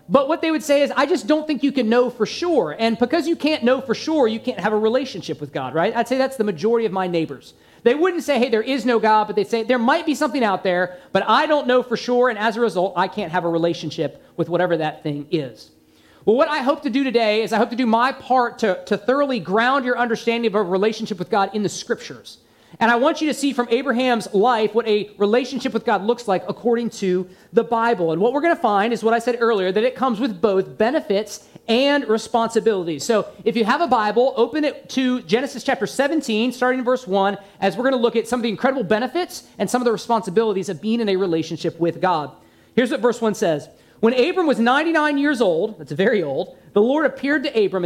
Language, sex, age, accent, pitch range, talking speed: English, male, 40-59, American, 195-255 Hz, 250 wpm